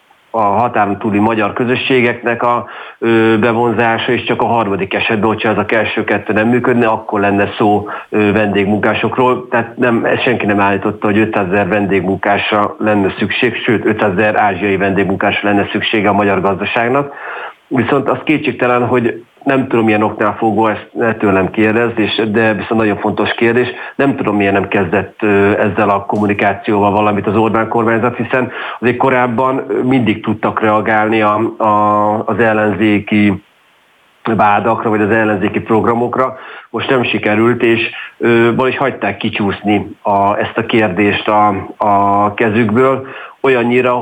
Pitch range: 105-120 Hz